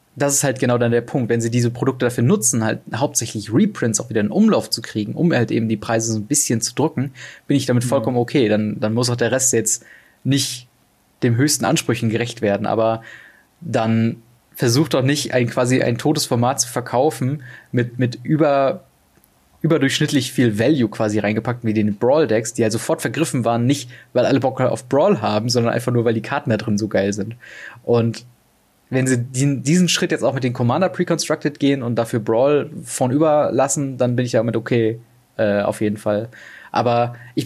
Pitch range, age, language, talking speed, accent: 115-140 Hz, 20-39, German, 200 wpm, German